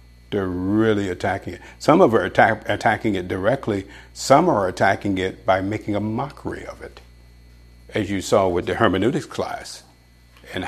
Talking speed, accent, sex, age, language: 165 wpm, American, male, 50-69, English